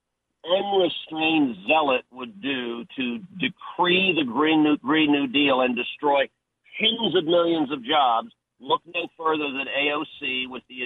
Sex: male